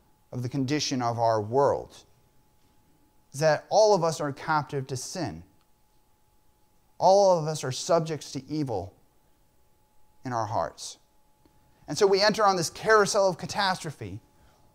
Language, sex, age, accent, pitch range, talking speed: English, male, 30-49, American, 120-175 Hz, 140 wpm